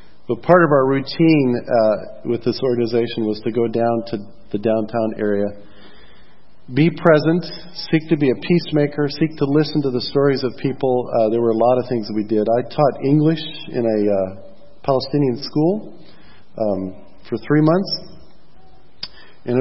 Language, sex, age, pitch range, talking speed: English, male, 40-59, 110-145 Hz, 165 wpm